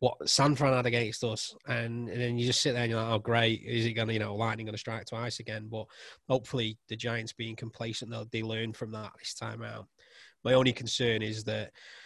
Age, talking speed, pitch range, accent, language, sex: 20-39, 240 wpm, 110-120 Hz, British, English, male